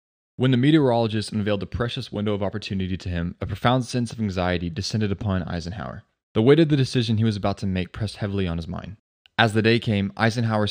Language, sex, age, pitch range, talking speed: English, male, 20-39, 95-115 Hz, 220 wpm